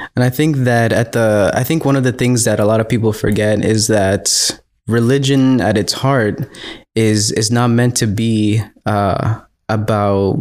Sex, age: male, 20-39